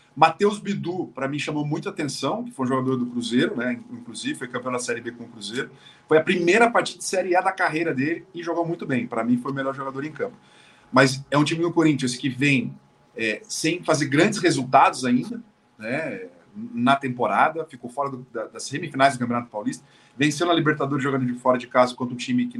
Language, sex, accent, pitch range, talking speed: Portuguese, male, Brazilian, 130-190 Hz, 220 wpm